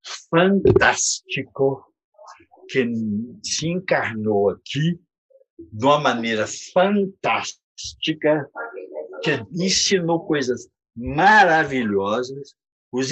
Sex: male